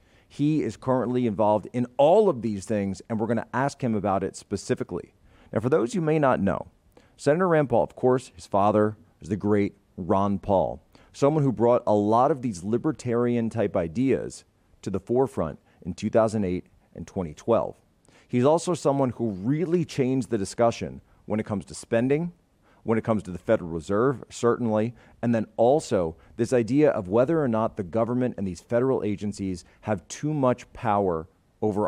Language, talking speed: English, 175 wpm